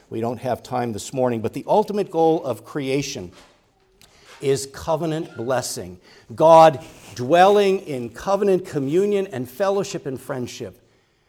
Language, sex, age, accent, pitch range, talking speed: English, male, 50-69, American, 120-160 Hz, 130 wpm